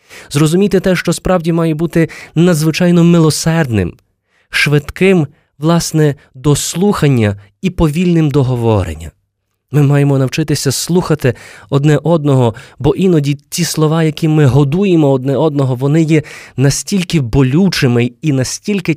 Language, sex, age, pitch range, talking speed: Ukrainian, male, 20-39, 125-170 Hz, 110 wpm